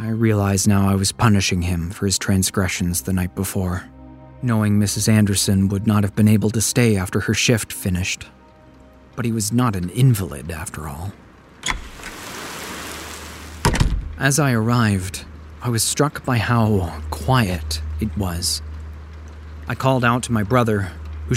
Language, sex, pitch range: English, male, 80-120 Hz